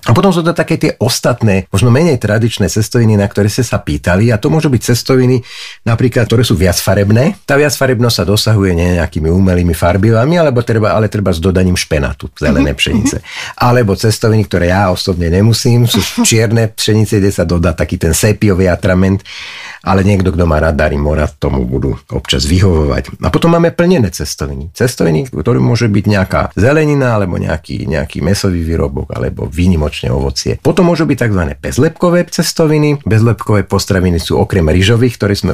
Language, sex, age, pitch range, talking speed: Slovak, male, 50-69, 85-115 Hz, 170 wpm